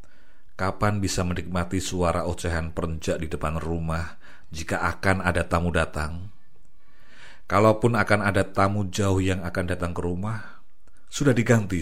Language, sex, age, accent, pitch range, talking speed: Indonesian, male, 40-59, native, 85-105 Hz, 130 wpm